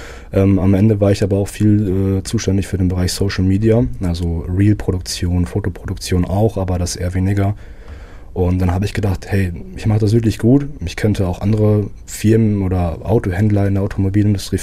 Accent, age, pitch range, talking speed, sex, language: German, 20-39, 90-105 Hz, 175 wpm, male, German